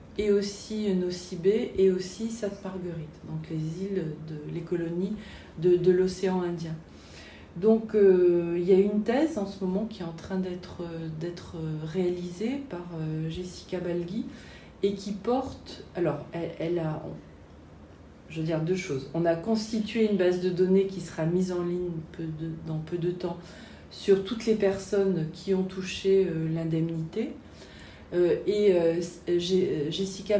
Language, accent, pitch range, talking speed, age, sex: French, French, 175-210 Hz, 155 wpm, 40-59, female